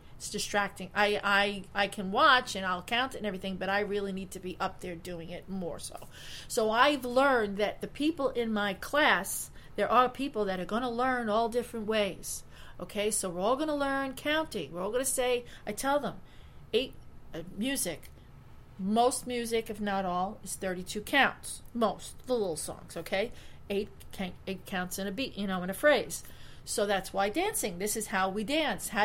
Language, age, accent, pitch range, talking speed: English, 40-59, American, 195-265 Hz, 200 wpm